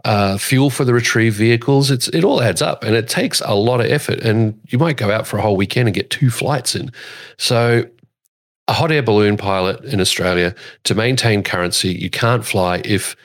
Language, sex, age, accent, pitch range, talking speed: English, male, 40-59, Australian, 95-125 Hz, 215 wpm